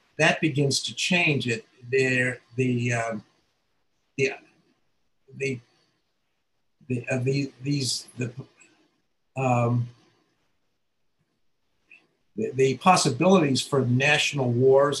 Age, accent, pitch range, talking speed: 50-69, American, 120-145 Hz, 95 wpm